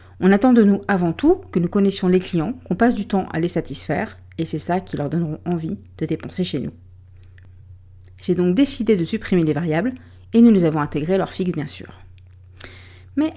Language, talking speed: French, 205 wpm